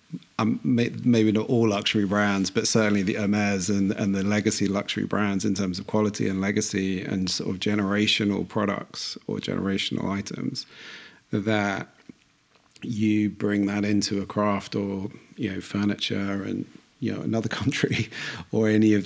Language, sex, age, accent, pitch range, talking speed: English, male, 40-59, British, 100-110 Hz, 155 wpm